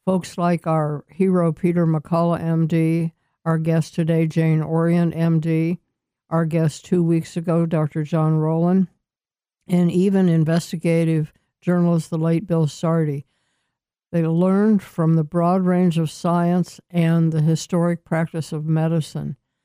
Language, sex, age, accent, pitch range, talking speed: English, female, 60-79, American, 160-175 Hz, 130 wpm